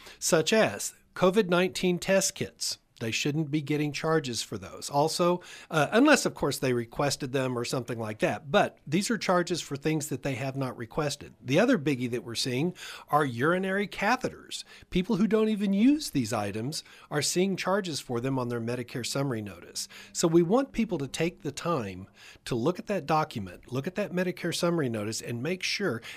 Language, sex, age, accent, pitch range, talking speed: English, male, 40-59, American, 125-180 Hz, 190 wpm